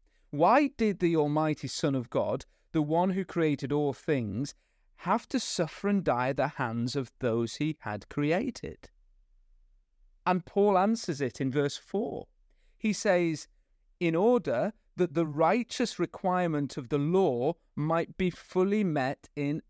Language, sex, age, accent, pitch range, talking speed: English, male, 30-49, British, 140-190 Hz, 150 wpm